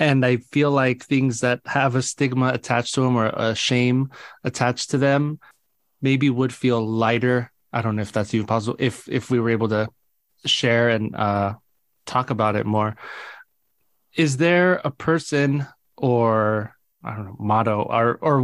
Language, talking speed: English, 175 wpm